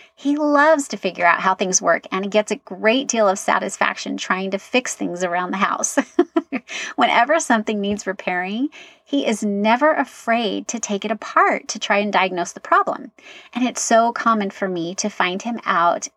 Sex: female